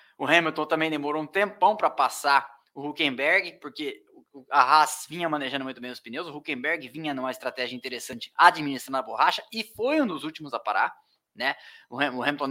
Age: 20-39